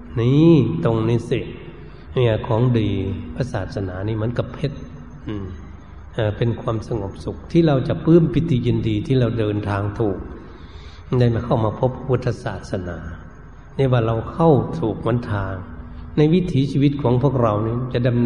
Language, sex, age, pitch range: Thai, male, 60-79, 100-140 Hz